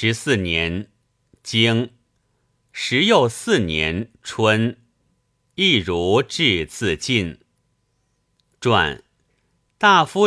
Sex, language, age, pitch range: male, Chinese, 50-69, 105-130 Hz